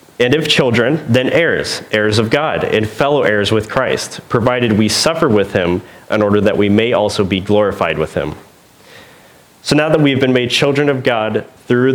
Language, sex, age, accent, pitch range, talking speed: English, male, 30-49, American, 105-125 Hz, 190 wpm